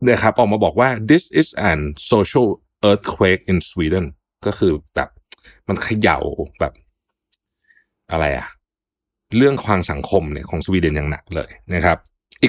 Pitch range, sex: 85-115 Hz, male